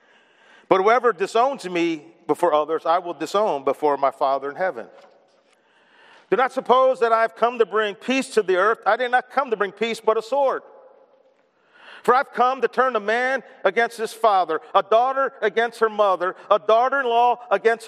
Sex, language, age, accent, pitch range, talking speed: male, English, 50-69, American, 185-265 Hz, 190 wpm